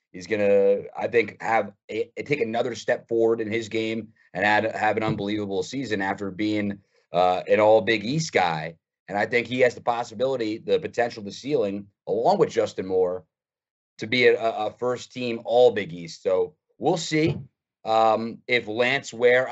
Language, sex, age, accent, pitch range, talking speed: English, male, 30-49, American, 110-135 Hz, 170 wpm